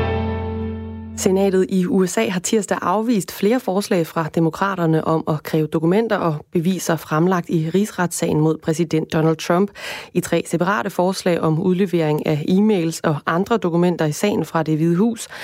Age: 20-39